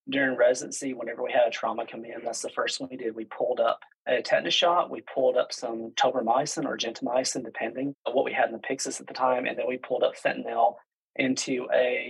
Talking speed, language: 235 wpm, English